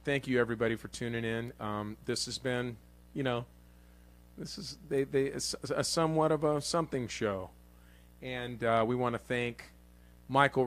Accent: American